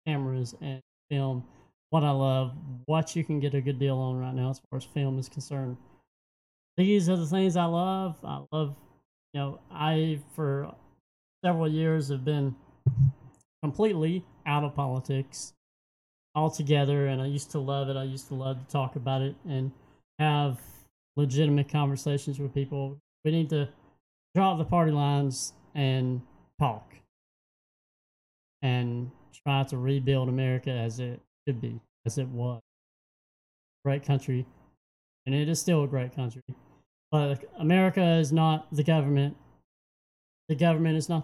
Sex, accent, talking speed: male, American, 150 wpm